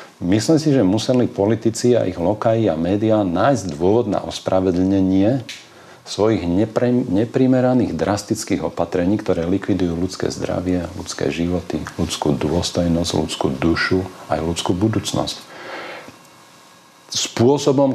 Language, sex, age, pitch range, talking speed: Slovak, male, 40-59, 95-120 Hz, 110 wpm